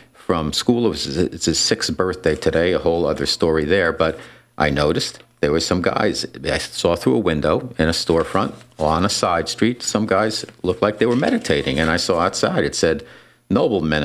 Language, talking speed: English, 200 wpm